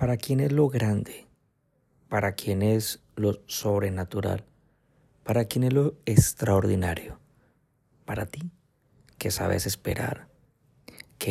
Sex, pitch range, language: male, 100-130 Hz, Spanish